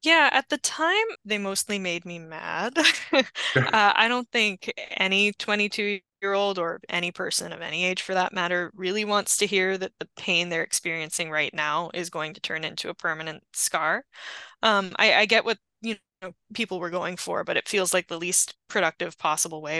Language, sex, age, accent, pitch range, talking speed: English, female, 10-29, American, 175-220 Hz, 190 wpm